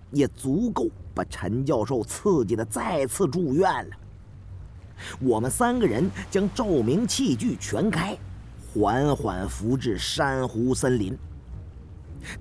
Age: 40-59